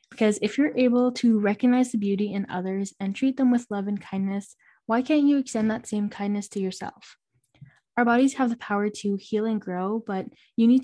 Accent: American